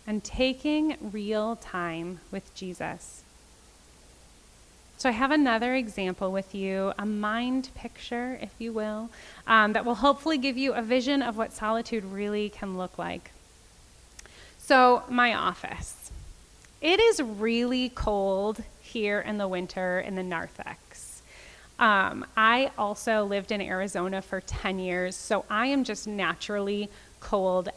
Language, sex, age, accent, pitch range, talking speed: English, female, 20-39, American, 190-255 Hz, 135 wpm